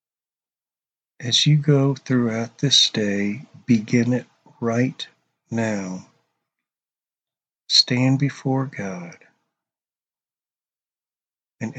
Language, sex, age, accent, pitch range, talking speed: English, male, 50-69, American, 115-145 Hz, 70 wpm